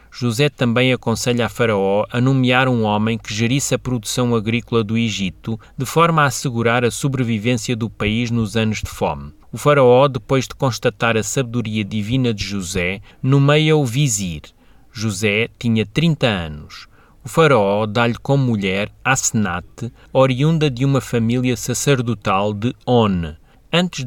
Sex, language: male, Portuguese